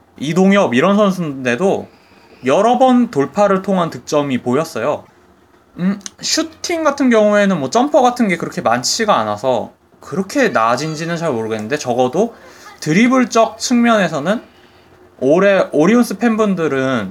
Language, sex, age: Korean, male, 20-39